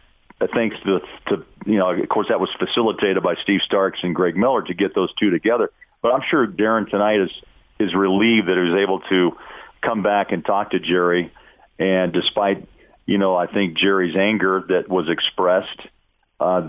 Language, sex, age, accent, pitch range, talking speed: English, male, 50-69, American, 95-105 Hz, 185 wpm